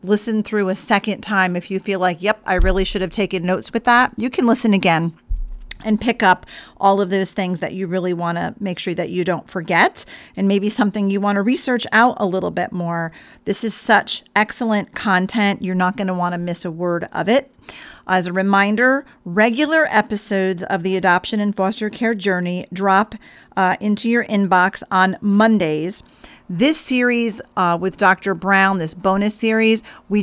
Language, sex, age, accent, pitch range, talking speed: English, female, 40-59, American, 185-220 Hz, 195 wpm